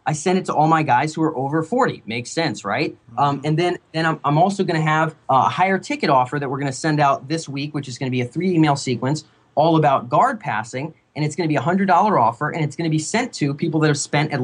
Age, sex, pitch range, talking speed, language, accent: 30-49, male, 140-180 Hz, 285 wpm, English, American